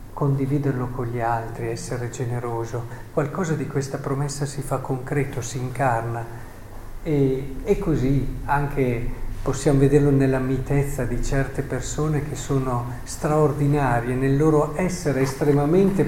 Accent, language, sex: native, Italian, male